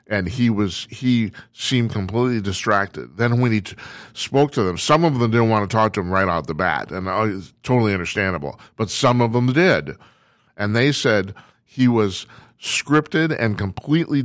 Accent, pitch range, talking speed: American, 95-120 Hz, 180 wpm